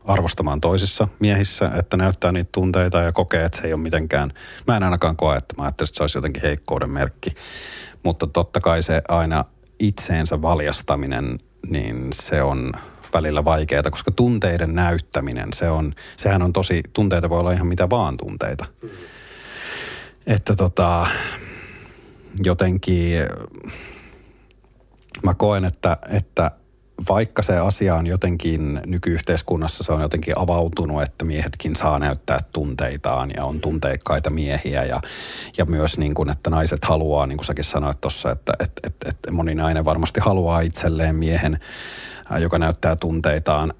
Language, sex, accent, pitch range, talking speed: Finnish, male, native, 75-95 Hz, 140 wpm